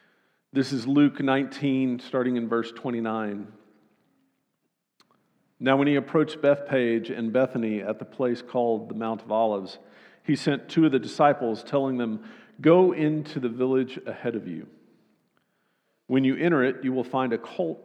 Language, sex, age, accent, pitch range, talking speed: English, male, 50-69, American, 115-150 Hz, 160 wpm